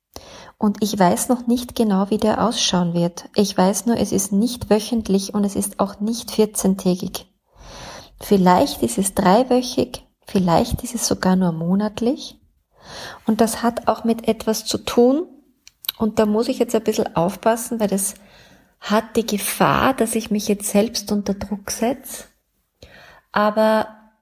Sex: female